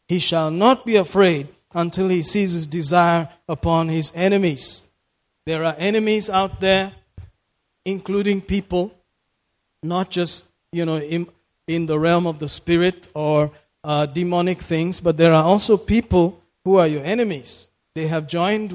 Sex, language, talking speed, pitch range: male, English, 150 wpm, 165-205 Hz